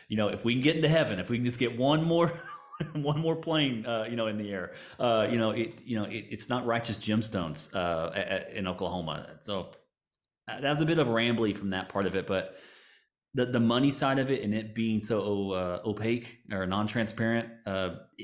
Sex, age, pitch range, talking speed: male, 30-49, 95-110 Hz, 220 wpm